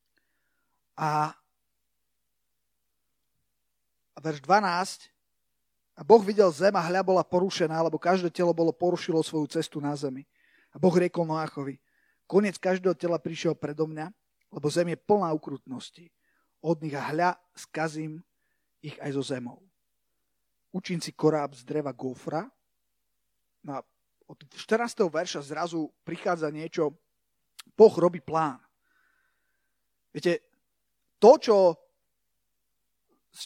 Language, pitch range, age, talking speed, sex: Slovak, 155-195 Hz, 30-49, 115 wpm, male